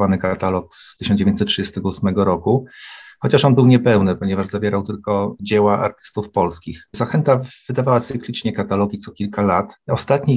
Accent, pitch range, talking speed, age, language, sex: native, 100-115 Hz, 125 wpm, 30-49, Polish, male